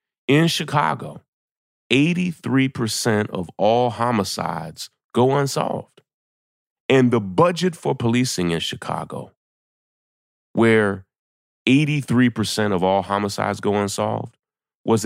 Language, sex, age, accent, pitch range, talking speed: English, male, 30-49, American, 95-130 Hz, 90 wpm